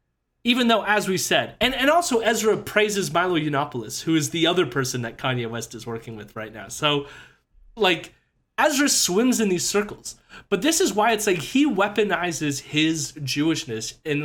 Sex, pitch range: male, 130-205 Hz